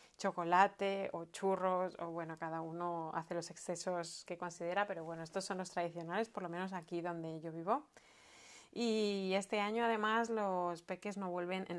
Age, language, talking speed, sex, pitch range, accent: 20-39, Spanish, 175 wpm, female, 170-195 Hz, Spanish